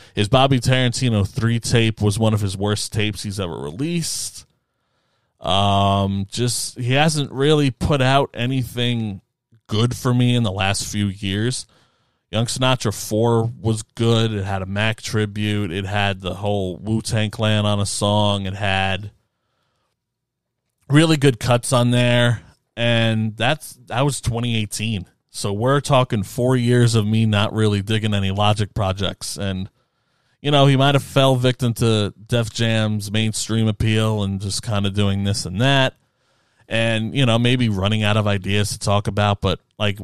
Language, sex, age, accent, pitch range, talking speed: English, male, 20-39, American, 105-125 Hz, 160 wpm